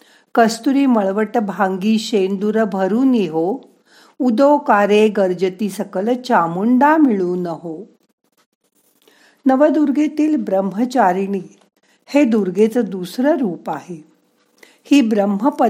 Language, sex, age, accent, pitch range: Marathi, female, 50-69, native, 185-255 Hz